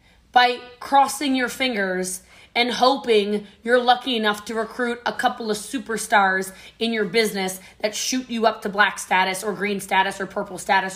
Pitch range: 205-265 Hz